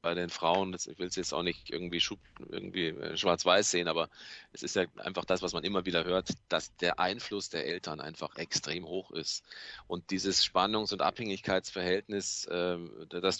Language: German